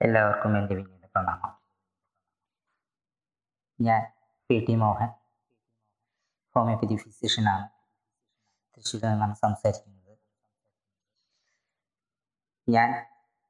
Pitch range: 105-125 Hz